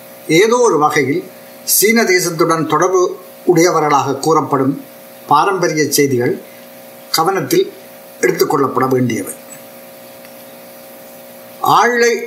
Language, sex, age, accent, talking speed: Tamil, male, 50-69, native, 70 wpm